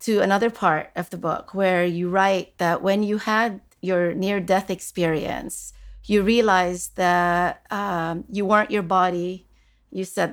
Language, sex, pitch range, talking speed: English, female, 175-210 Hz, 150 wpm